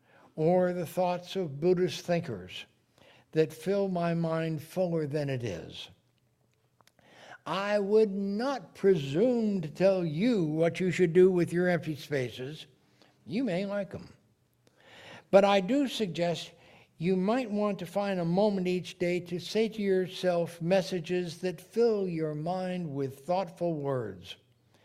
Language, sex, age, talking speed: English, male, 60-79, 140 wpm